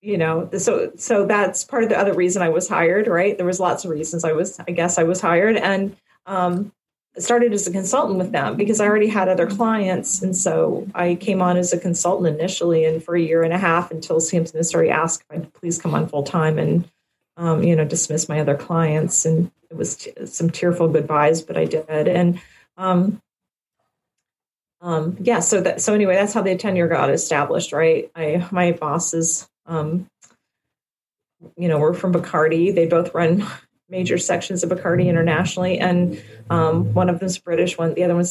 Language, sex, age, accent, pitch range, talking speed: English, female, 40-59, American, 165-200 Hz, 200 wpm